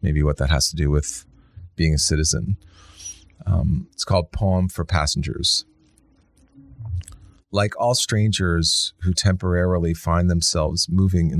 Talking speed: 130 wpm